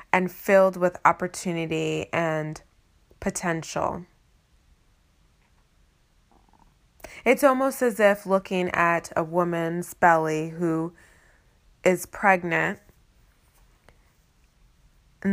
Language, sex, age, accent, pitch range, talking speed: English, female, 20-39, American, 160-185 Hz, 75 wpm